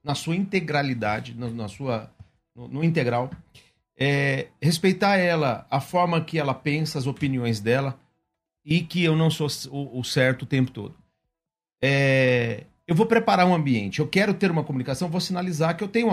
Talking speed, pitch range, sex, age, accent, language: 180 wpm, 125-170 Hz, male, 50-69, Brazilian, Portuguese